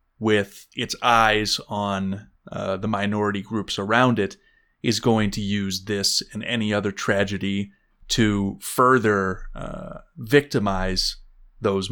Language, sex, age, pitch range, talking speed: English, male, 30-49, 100-125 Hz, 120 wpm